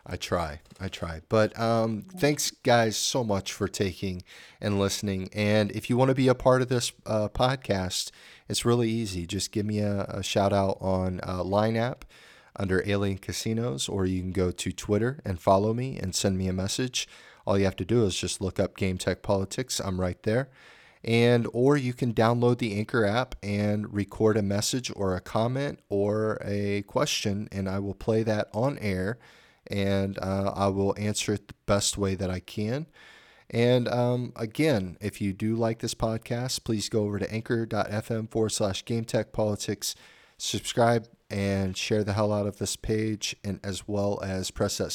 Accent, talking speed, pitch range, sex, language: American, 190 wpm, 95-115 Hz, male, English